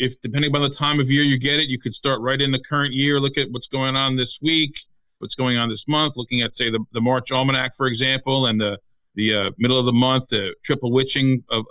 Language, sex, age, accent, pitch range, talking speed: English, male, 40-59, American, 120-145 Hz, 260 wpm